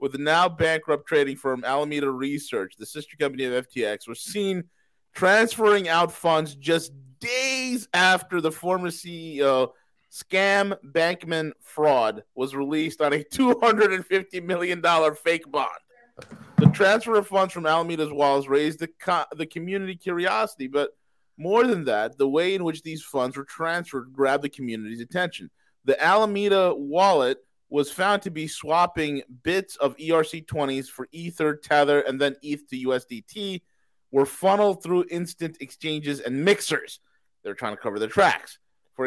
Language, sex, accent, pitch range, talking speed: English, male, American, 135-180 Hz, 145 wpm